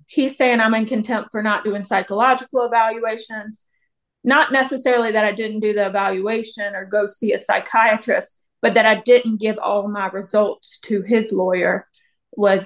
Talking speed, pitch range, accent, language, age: 165 wpm, 200-235 Hz, American, English, 30-49